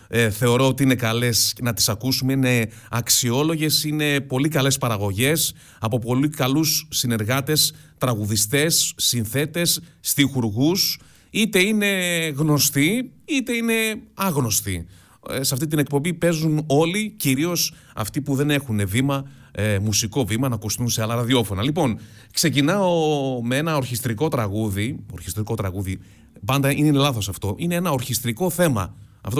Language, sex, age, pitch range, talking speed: Greek, male, 30-49, 115-155 Hz, 135 wpm